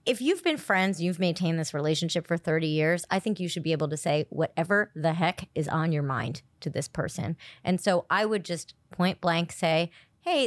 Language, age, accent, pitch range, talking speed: English, 30-49, American, 170-255 Hz, 220 wpm